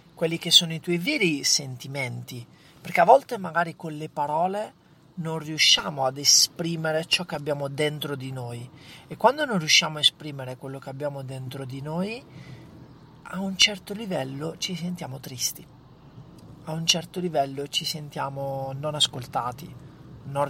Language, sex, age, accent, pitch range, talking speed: Italian, male, 40-59, native, 130-165 Hz, 150 wpm